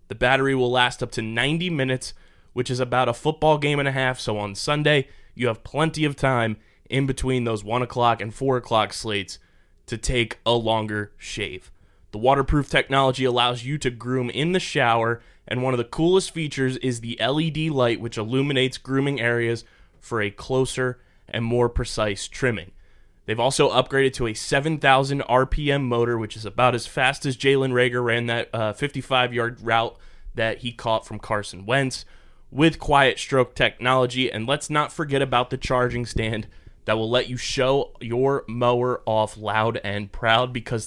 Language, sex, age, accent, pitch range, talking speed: English, male, 20-39, American, 110-135 Hz, 180 wpm